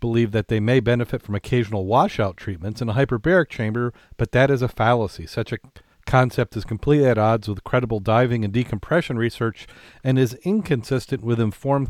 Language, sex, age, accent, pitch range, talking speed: English, male, 40-59, American, 110-130 Hz, 180 wpm